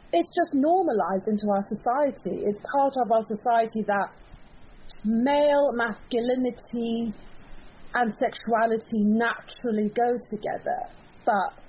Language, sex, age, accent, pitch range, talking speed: English, female, 30-49, British, 205-255 Hz, 105 wpm